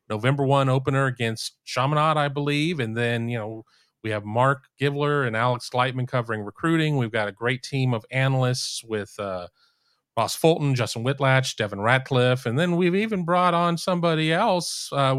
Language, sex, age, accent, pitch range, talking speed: English, male, 40-59, American, 115-150 Hz, 175 wpm